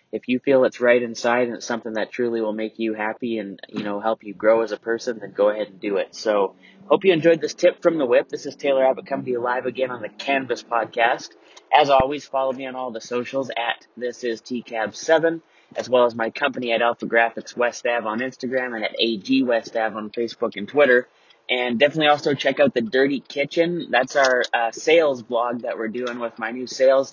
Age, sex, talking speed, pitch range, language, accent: 30-49, male, 230 wpm, 115-135 Hz, English, American